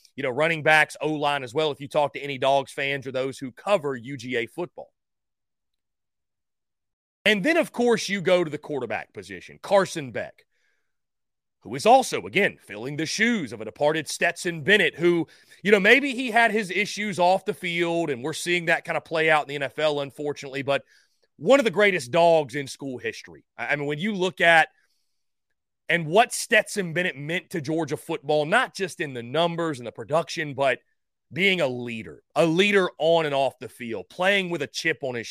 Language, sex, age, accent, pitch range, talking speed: English, male, 30-49, American, 145-205 Hz, 195 wpm